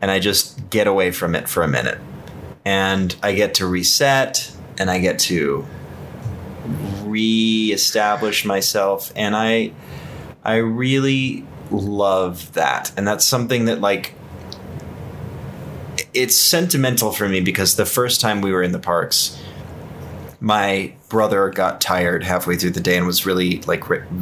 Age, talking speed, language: 20-39, 145 wpm, English